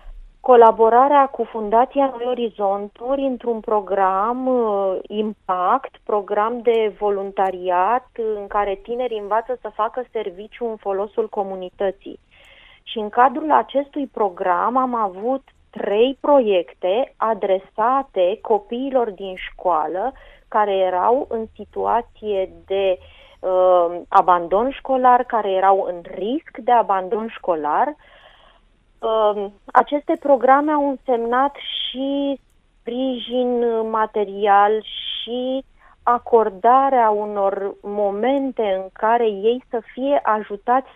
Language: Romanian